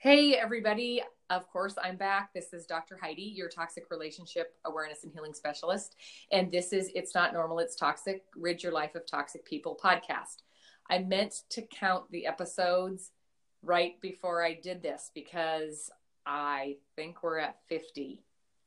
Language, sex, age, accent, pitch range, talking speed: English, female, 30-49, American, 165-195 Hz, 160 wpm